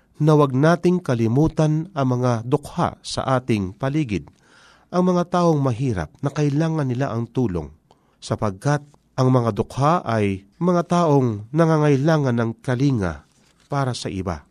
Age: 40-59